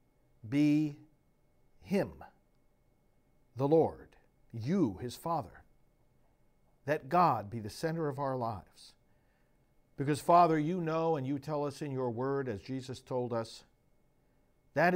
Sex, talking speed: male, 125 wpm